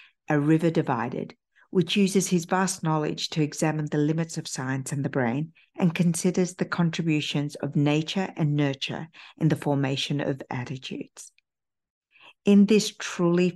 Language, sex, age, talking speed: English, female, 50-69, 145 wpm